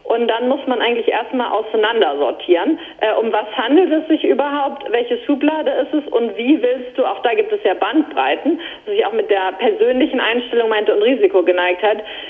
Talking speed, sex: 185 wpm, female